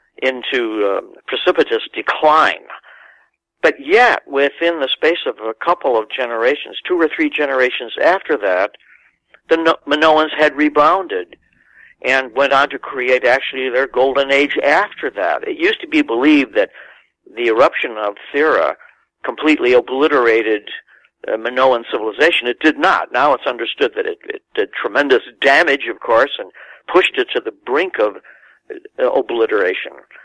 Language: English